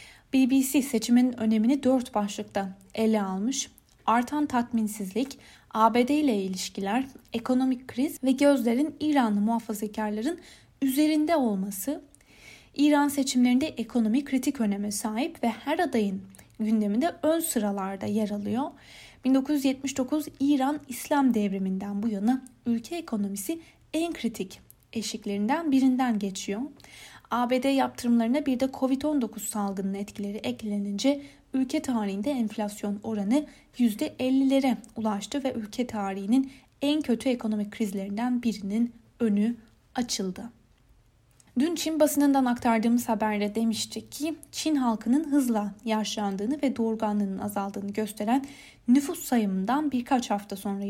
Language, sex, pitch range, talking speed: Turkish, female, 215-275 Hz, 105 wpm